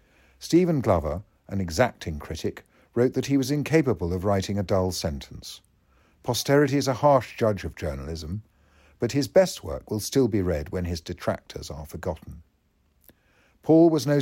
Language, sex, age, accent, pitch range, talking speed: English, male, 50-69, British, 85-120 Hz, 160 wpm